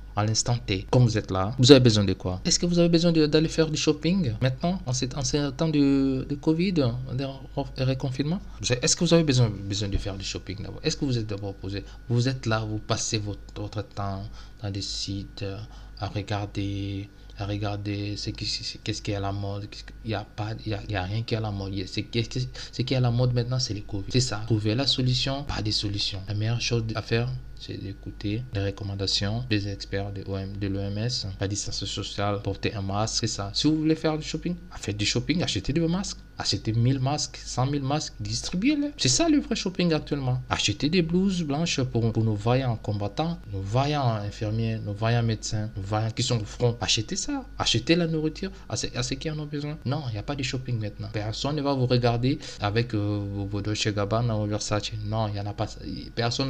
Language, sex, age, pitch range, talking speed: French, male, 20-39, 105-135 Hz, 230 wpm